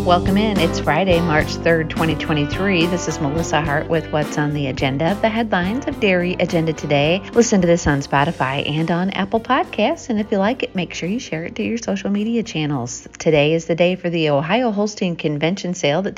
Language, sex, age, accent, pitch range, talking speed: English, female, 40-59, American, 150-210 Hz, 210 wpm